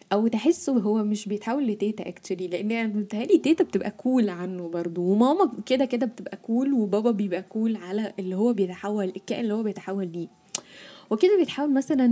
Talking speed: 180 wpm